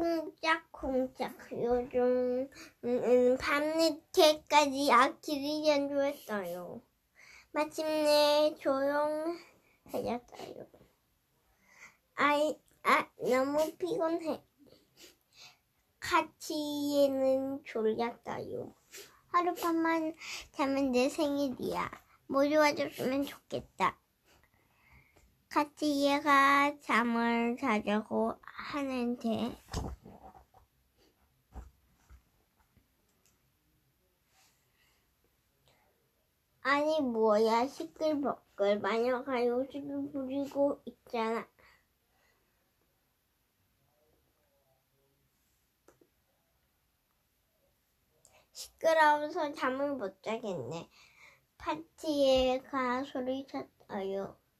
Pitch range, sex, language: 245-300 Hz, male, Korean